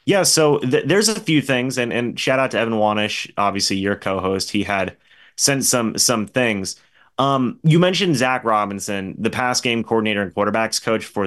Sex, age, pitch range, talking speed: male, 30-49, 105-135 Hz, 190 wpm